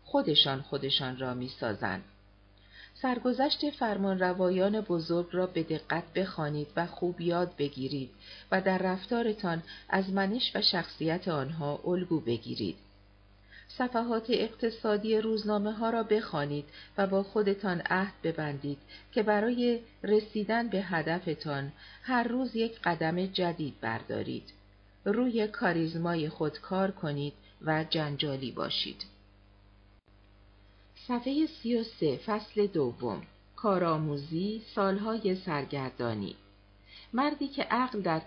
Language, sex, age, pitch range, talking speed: Persian, female, 50-69, 135-205 Hz, 105 wpm